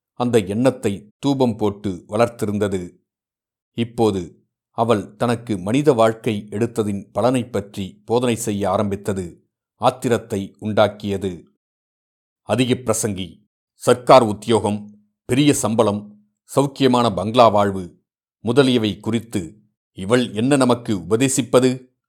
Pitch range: 105-125 Hz